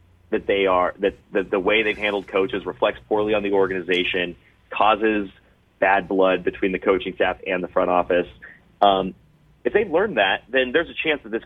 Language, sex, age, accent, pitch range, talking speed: English, male, 30-49, American, 95-110 Hz, 190 wpm